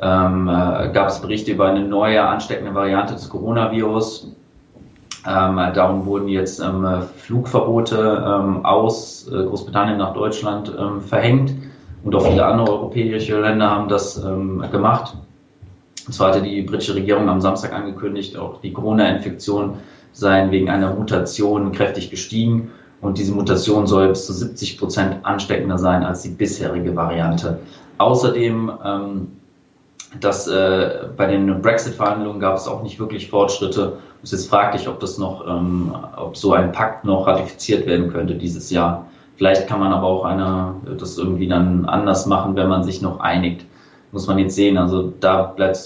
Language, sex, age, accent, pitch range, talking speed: German, male, 30-49, German, 95-105 Hz, 150 wpm